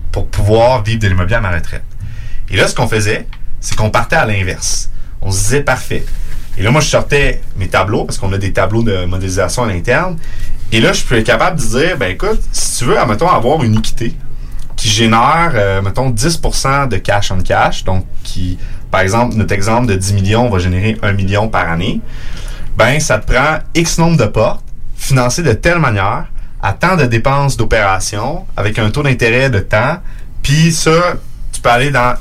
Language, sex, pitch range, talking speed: French, male, 100-125 Hz, 200 wpm